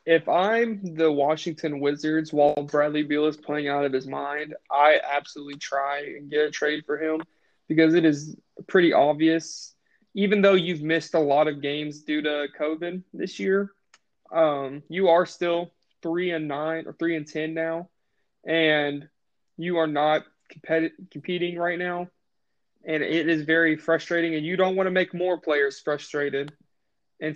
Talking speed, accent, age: 165 wpm, American, 20-39